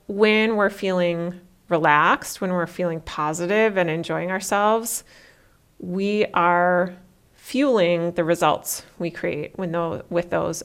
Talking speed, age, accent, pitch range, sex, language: 125 wpm, 30-49, American, 170-200 Hz, female, English